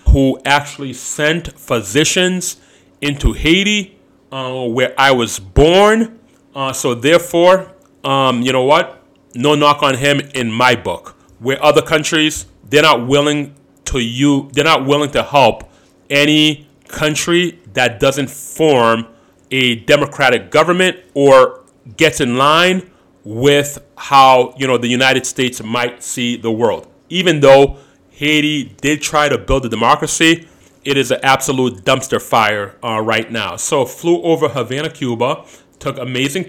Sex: male